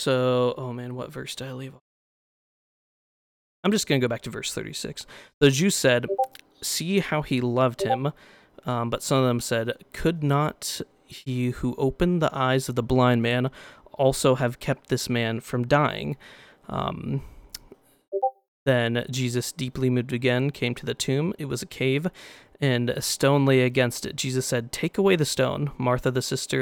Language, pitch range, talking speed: English, 125-140 Hz, 180 wpm